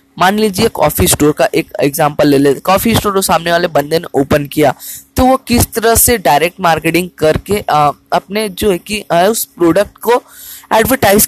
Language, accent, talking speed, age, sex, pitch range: Hindi, native, 185 wpm, 10-29, female, 150-200 Hz